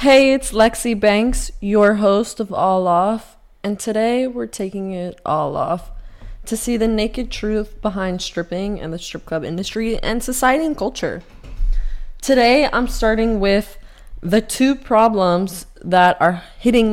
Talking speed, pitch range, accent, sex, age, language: 150 wpm, 175-220 Hz, American, female, 20-39, English